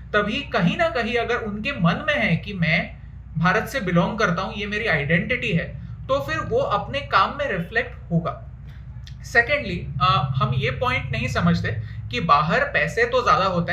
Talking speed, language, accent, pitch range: 175 wpm, Hindi, native, 160-215 Hz